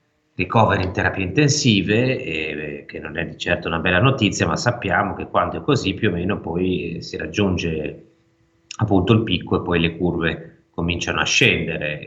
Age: 30-49